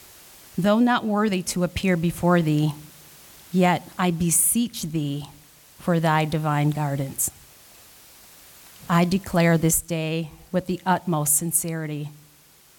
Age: 30-49